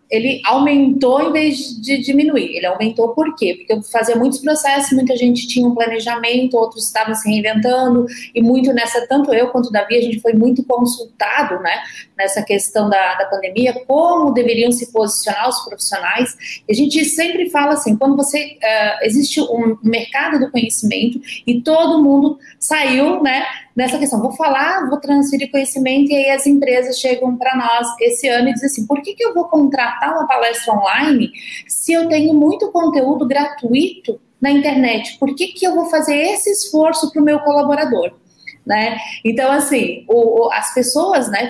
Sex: female